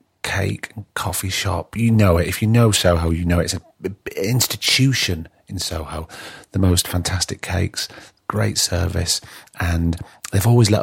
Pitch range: 85-95 Hz